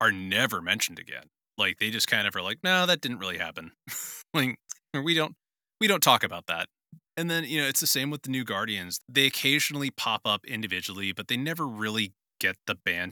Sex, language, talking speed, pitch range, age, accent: male, English, 215 wpm, 100-125 Hz, 30-49, American